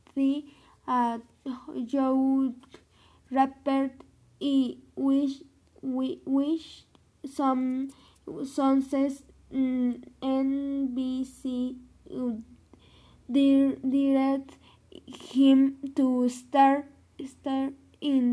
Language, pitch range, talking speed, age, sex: Spanish, 260-285 Hz, 65 wpm, 10-29, female